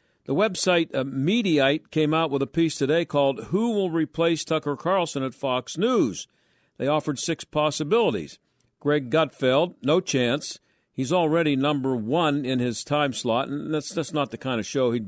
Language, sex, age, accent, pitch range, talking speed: English, male, 50-69, American, 135-175 Hz, 175 wpm